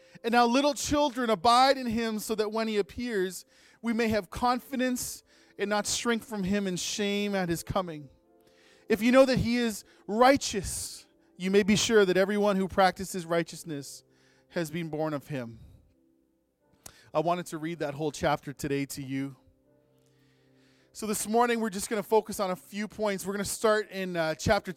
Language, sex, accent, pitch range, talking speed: English, male, American, 165-245 Hz, 185 wpm